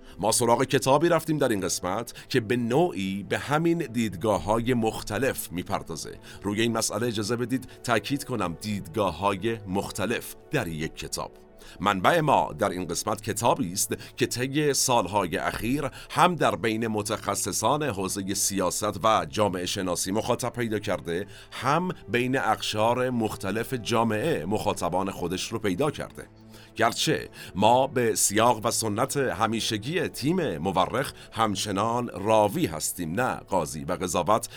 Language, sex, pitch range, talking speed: Persian, male, 95-120 Hz, 130 wpm